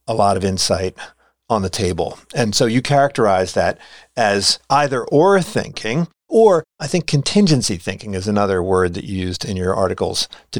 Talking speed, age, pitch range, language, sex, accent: 175 wpm, 40-59, 95-145 Hz, English, male, American